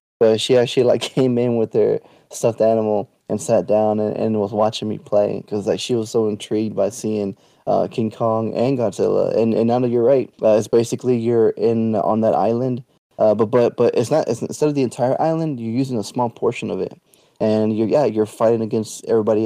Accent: American